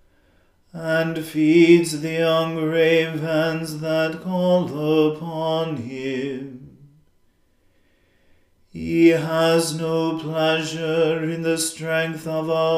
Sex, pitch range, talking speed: male, 155-165 Hz, 85 wpm